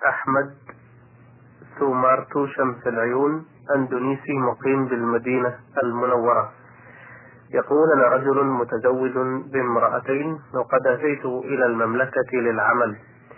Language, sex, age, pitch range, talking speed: Arabic, male, 30-49, 125-140 Hz, 80 wpm